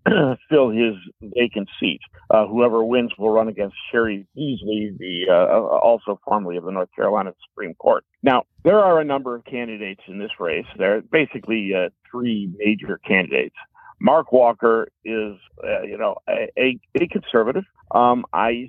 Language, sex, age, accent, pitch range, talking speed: English, male, 50-69, American, 105-125 Hz, 165 wpm